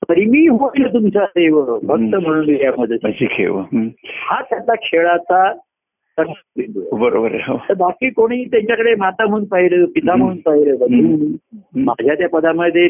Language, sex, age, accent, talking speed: Marathi, male, 60-79, native, 110 wpm